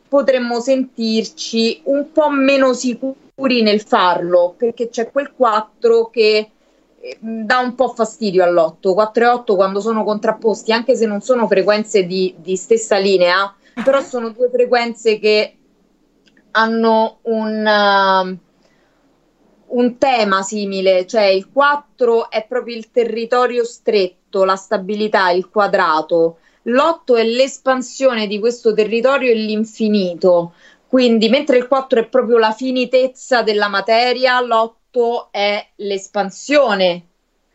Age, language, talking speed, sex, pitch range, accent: 20-39, Italian, 125 wpm, female, 200-245 Hz, native